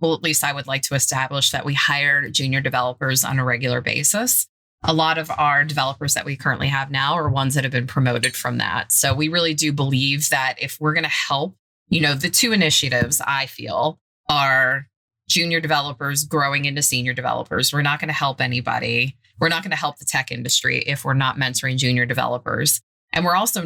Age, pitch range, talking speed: 20-39, 130-150 Hz, 210 wpm